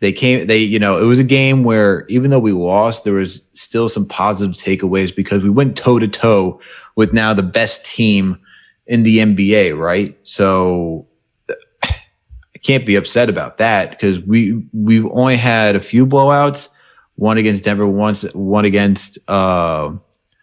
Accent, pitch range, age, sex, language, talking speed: American, 100-130 Hz, 30-49, male, English, 165 wpm